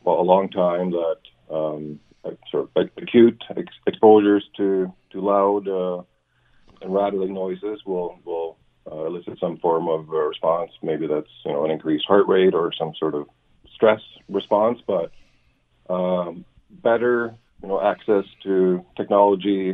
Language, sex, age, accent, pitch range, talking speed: English, male, 40-59, American, 85-100 Hz, 150 wpm